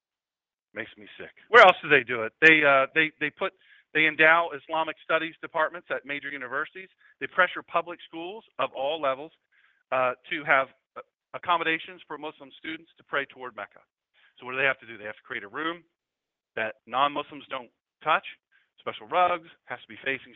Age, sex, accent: 40-59, male, American